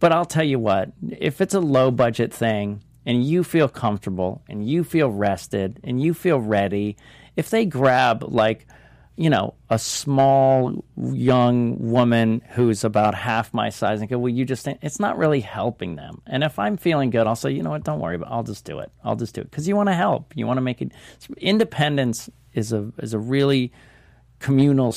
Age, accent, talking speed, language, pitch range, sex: 40-59, American, 210 wpm, English, 110-140 Hz, male